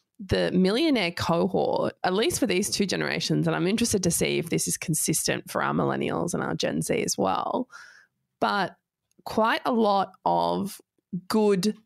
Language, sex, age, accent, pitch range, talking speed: English, female, 20-39, Australian, 165-210 Hz, 165 wpm